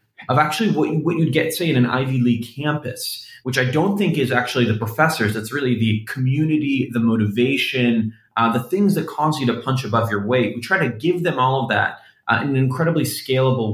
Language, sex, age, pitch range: English, male, 20-39, 115-135 Hz